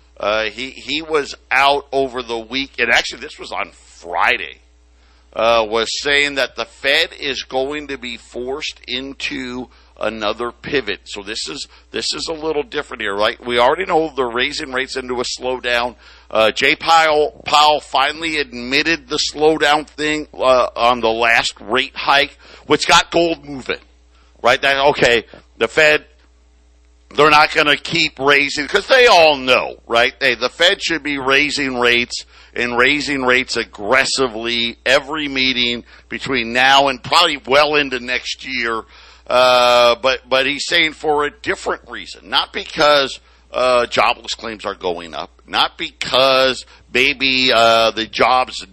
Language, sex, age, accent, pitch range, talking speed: English, male, 50-69, American, 115-145 Hz, 155 wpm